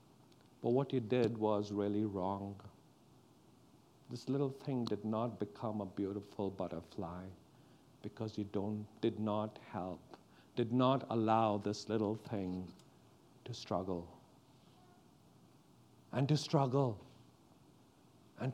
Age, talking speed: 50-69, 110 wpm